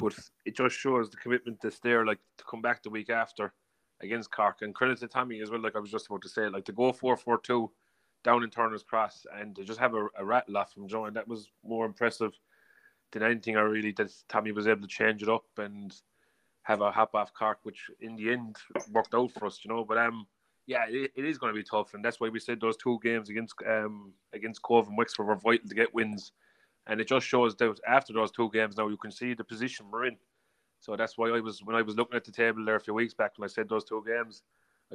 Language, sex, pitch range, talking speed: English, male, 110-115 Hz, 260 wpm